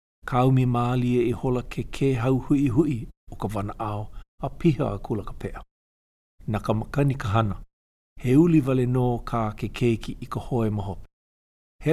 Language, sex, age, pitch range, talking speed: English, male, 50-69, 105-130 Hz, 170 wpm